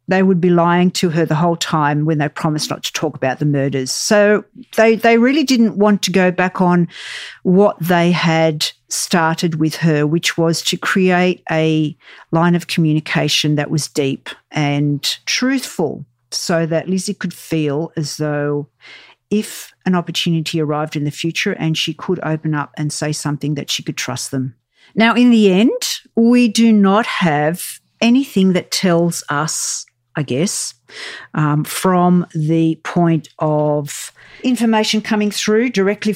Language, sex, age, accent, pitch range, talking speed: English, female, 50-69, Australian, 160-215 Hz, 160 wpm